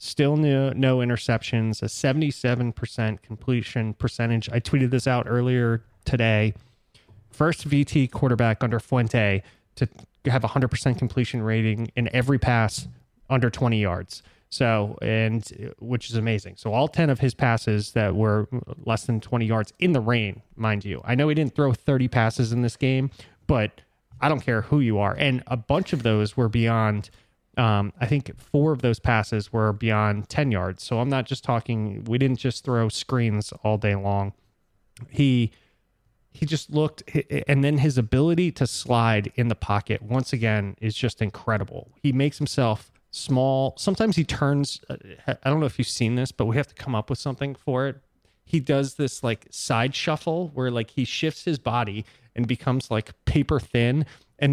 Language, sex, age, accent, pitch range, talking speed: English, male, 20-39, American, 110-135 Hz, 175 wpm